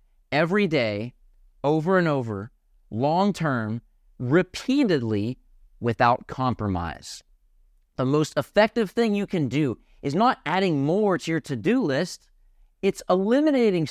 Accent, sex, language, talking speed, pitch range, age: American, male, English, 110 wpm, 125-190 Hz, 40-59